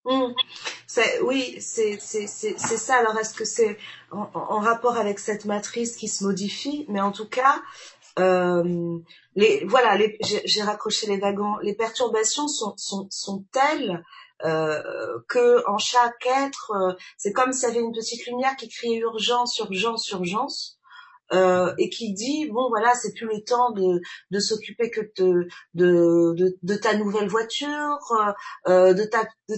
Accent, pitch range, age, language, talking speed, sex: French, 200-255 Hz, 40-59, French, 175 wpm, female